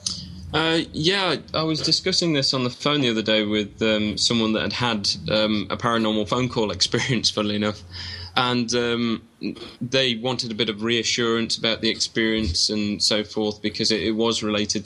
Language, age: English, 10-29